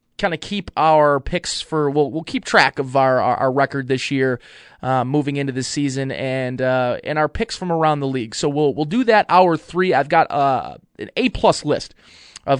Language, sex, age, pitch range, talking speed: English, male, 20-39, 130-160 Hz, 225 wpm